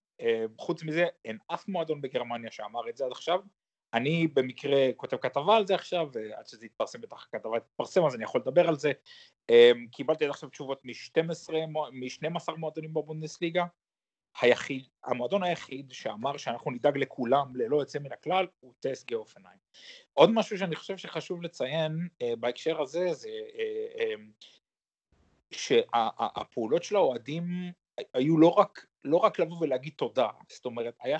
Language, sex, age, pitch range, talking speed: Hebrew, male, 30-49, 140-195 Hz, 150 wpm